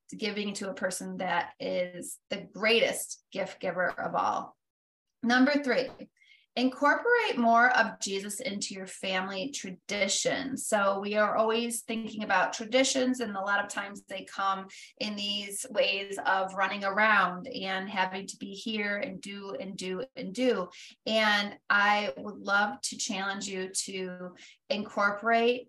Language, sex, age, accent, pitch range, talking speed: English, female, 30-49, American, 190-225 Hz, 145 wpm